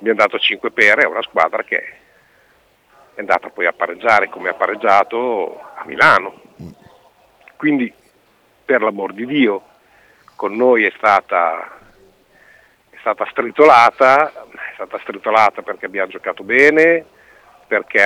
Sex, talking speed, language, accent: male, 125 wpm, Italian, native